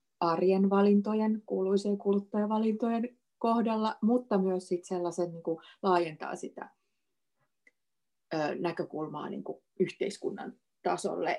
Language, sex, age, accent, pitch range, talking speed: Finnish, female, 30-49, native, 170-200 Hz, 100 wpm